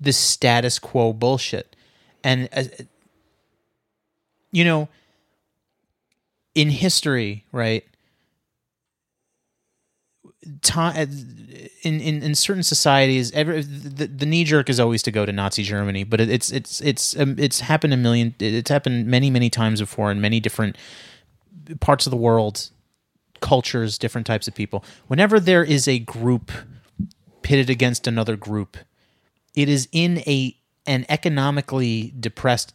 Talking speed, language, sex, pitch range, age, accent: 135 wpm, English, male, 110-140 Hz, 30-49, American